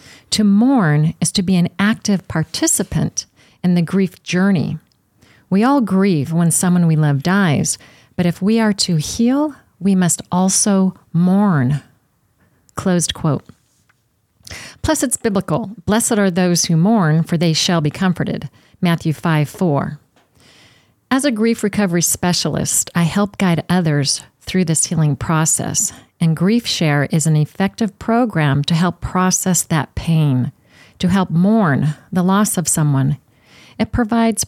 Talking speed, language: 145 wpm, English